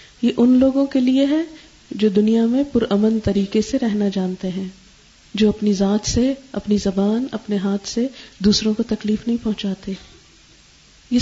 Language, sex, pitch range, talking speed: Urdu, female, 200-235 Hz, 160 wpm